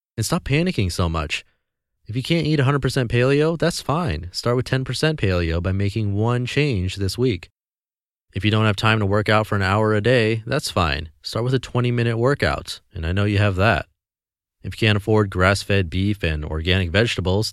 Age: 30-49